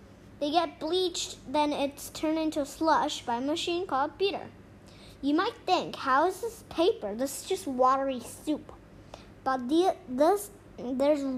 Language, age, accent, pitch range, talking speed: English, 10-29, American, 265-340 Hz, 160 wpm